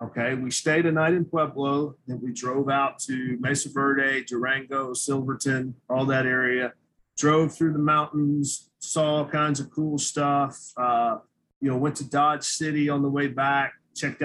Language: English